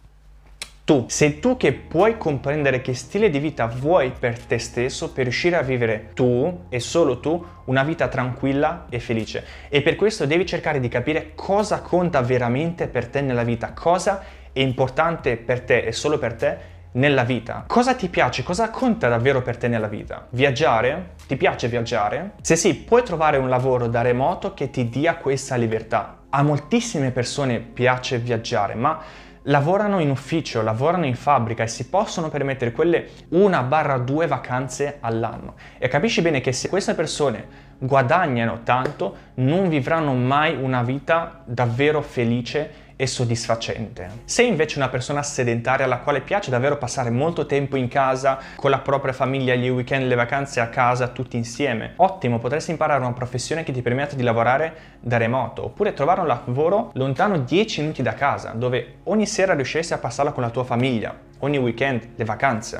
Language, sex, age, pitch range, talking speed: Italian, male, 20-39, 125-155 Hz, 170 wpm